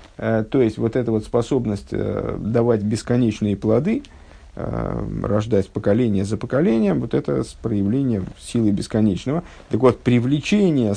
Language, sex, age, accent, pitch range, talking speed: Russian, male, 50-69, native, 110-130 Hz, 115 wpm